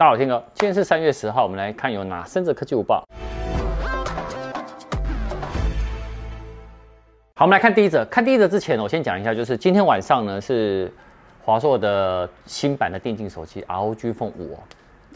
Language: Chinese